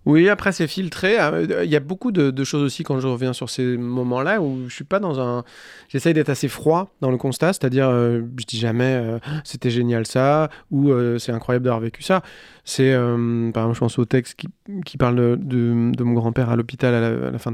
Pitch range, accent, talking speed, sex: 125-150 Hz, French, 240 wpm, male